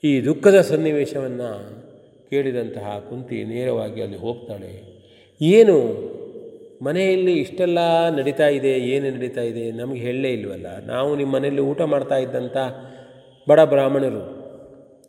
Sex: male